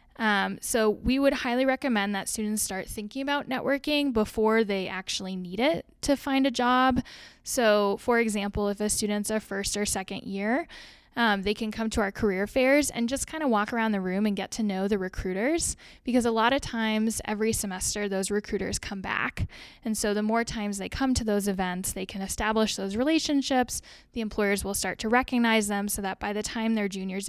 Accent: American